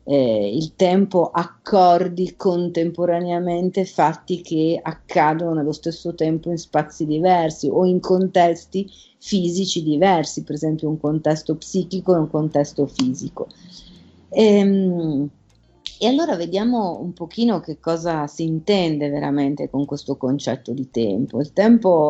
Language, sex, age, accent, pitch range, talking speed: Italian, female, 40-59, native, 140-175 Hz, 125 wpm